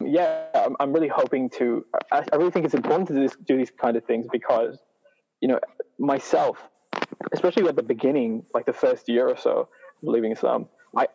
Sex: male